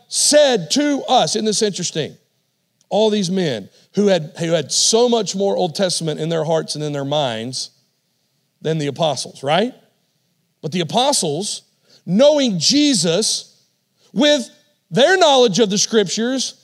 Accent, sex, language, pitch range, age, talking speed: American, male, English, 175-250 Hz, 40-59, 145 wpm